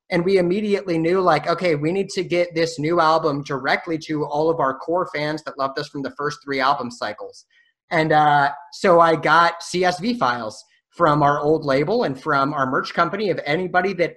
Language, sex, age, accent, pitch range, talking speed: English, male, 30-49, American, 150-185 Hz, 205 wpm